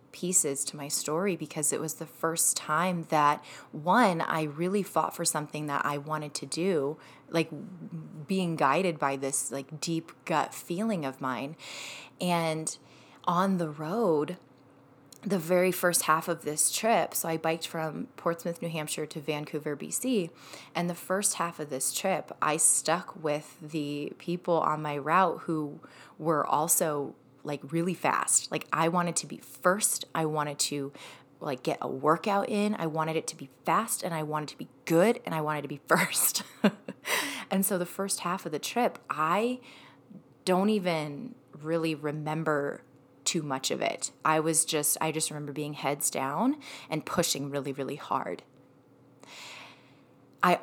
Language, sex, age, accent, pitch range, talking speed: English, female, 20-39, American, 150-180 Hz, 165 wpm